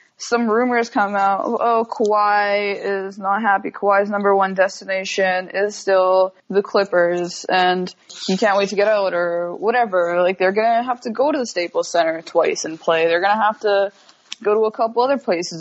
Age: 20-39